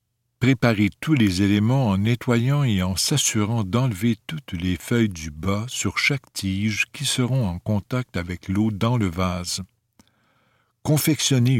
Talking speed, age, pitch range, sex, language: 145 wpm, 60-79, 100-130 Hz, male, French